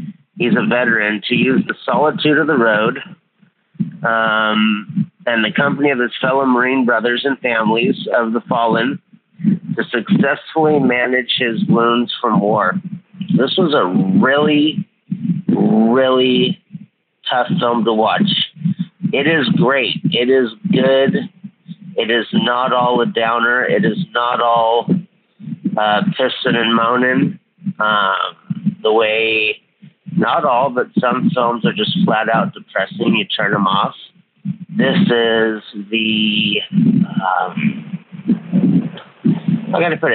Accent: American